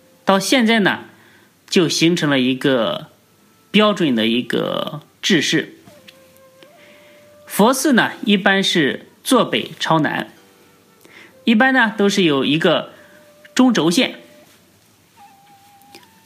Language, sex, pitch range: Chinese, male, 140-215 Hz